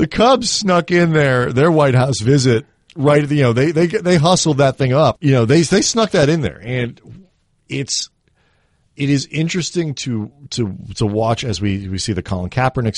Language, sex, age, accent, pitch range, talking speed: English, male, 40-59, American, 95-130 Hz, 200 wpm